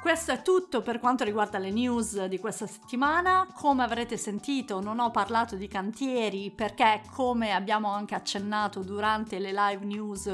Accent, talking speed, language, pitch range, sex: native, 165 wpm, Italian, 205-260 Hz, female